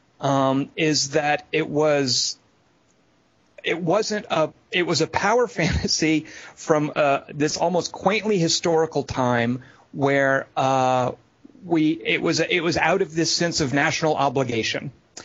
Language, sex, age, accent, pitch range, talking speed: English, male, 40-59, American, 130-160 Hz, 140 wpm